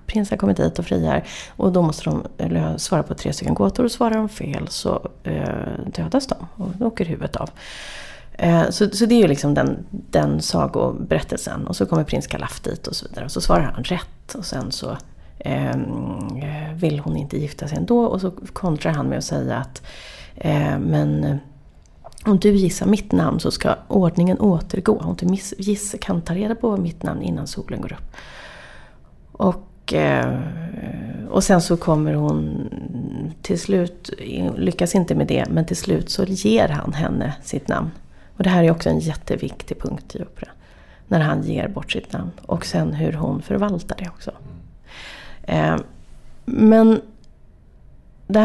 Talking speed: 165 wpm